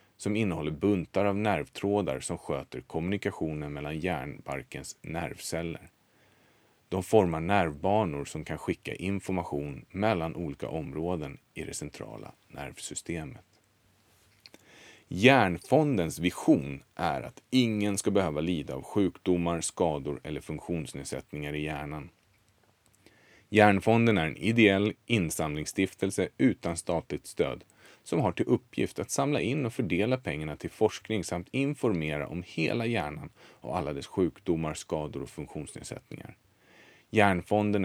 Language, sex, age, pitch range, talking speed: Swedish, male, 30-49, 80-110 Hz, 115 wpm